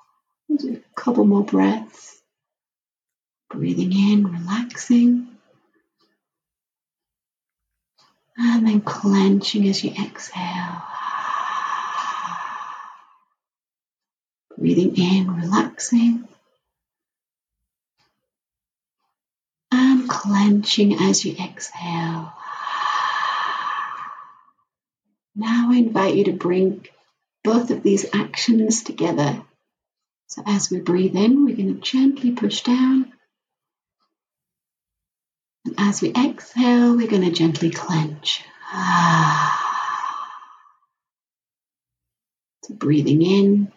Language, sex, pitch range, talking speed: English, female, 180-245 Hz, 75 wpm